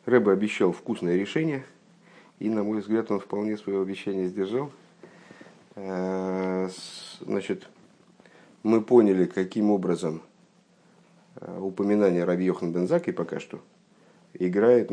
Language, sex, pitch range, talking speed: Russian, male, 90-105 Hz, 95 wpm